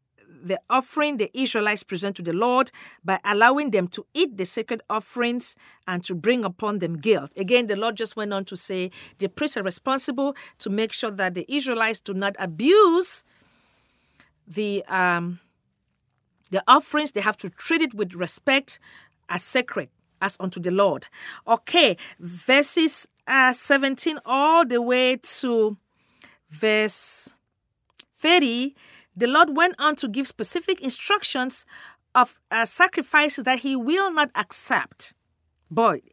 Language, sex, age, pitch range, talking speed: English, female, 40-59, 205-290 Hz, 145 wpm